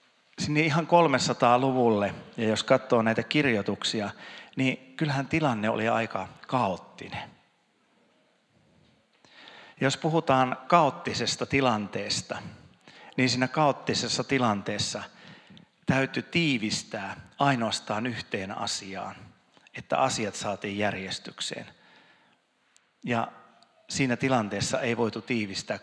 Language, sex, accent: Finnish, male, native